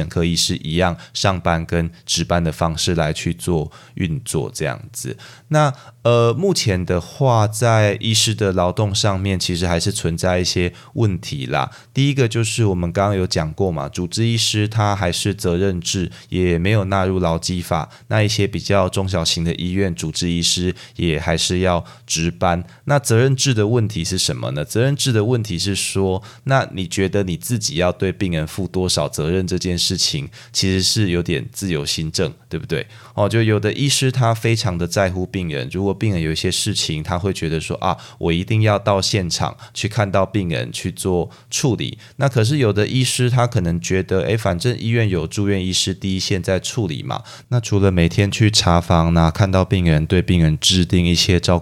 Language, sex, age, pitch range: Chinese, male, 20-39, 85-110 Hz